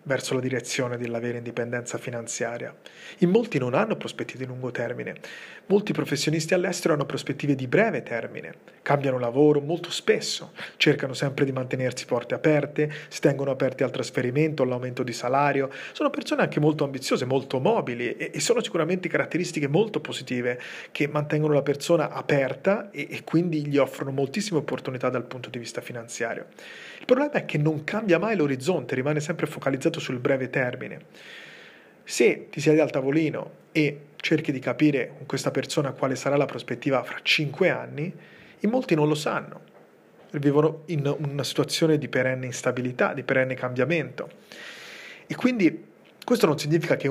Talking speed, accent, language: 160 wpm, native, Italian